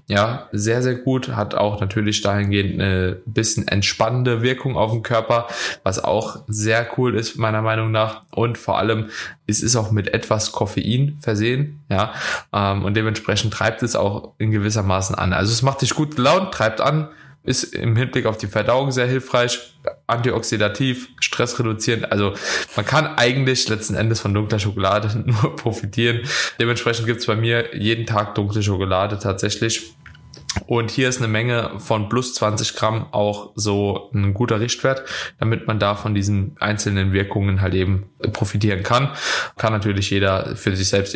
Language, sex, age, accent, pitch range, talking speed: German, male, 20-39, German, 100-120 Hz, 165 wpm